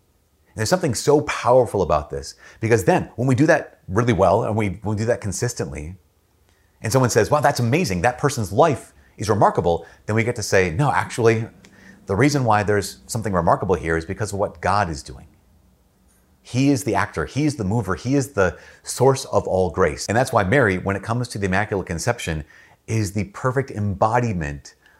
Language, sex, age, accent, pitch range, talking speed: English, male, 30-49, American, 85-115 Hz, 200 wpm